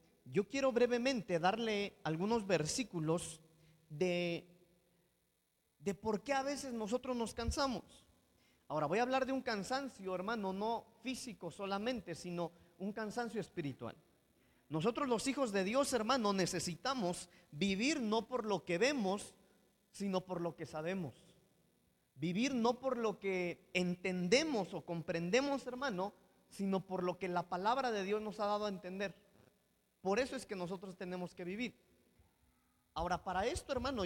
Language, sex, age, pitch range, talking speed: Spanish, male, 40-59, 175-230 Hz, 145 wpm